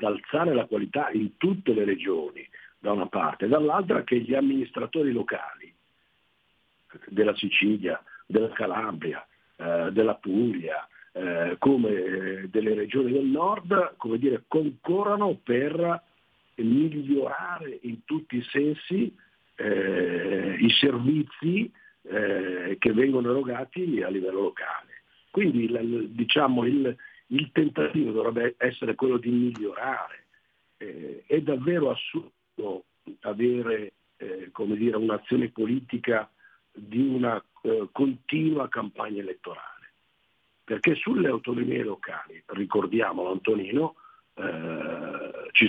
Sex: male